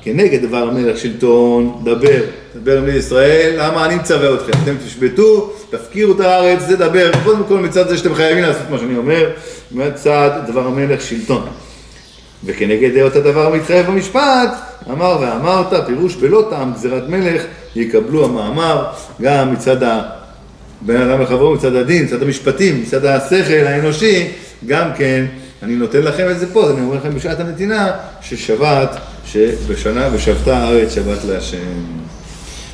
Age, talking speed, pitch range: 40-59, 145 wpm, 125-185 Hz